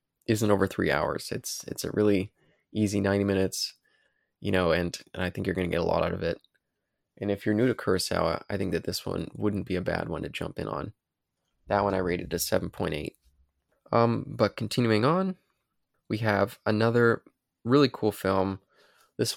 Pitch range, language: 95-110 Hz, English